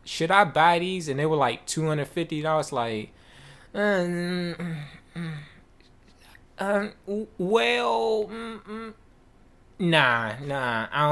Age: 20-39